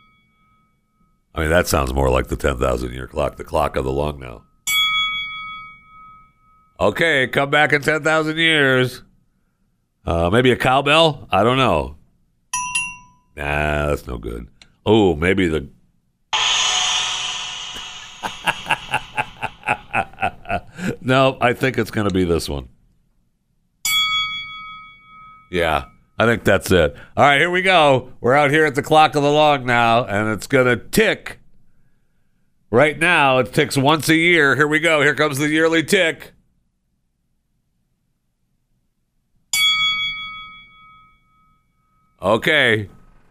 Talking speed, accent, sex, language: 120 wpm, American, male, English